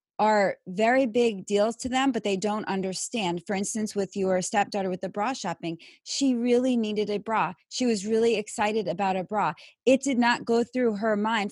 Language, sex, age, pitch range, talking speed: English, female, 30-49, 205-250 Hz, 200 wpm